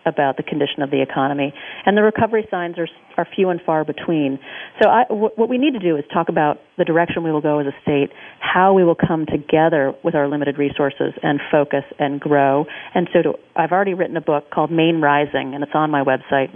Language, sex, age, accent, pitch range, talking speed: English, female, 40-59, American, 145-175 Hz, 230 wpm